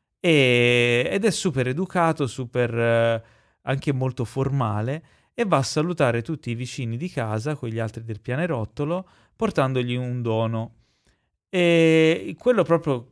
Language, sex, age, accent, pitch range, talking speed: Italian, male, 30-49, native, 115-140 Hz, 135 wpm